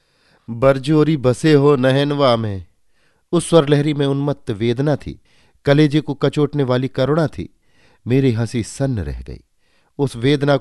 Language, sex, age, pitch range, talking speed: Hindi, male, 50-69, 105-145 Hz, 135 wpm